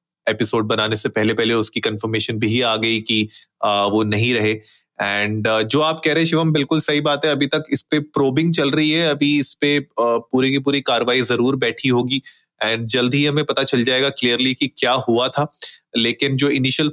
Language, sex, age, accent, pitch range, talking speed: Hindi, male, 30-49, native, 110-135 Hz, 125 wpm